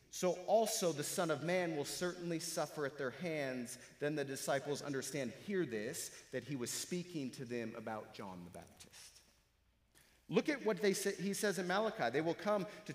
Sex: male